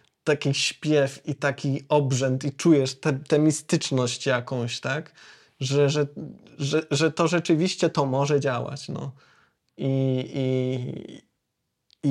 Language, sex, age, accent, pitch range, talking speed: Polish, male, 20-39, native, 140-165 Hz, 120 wpm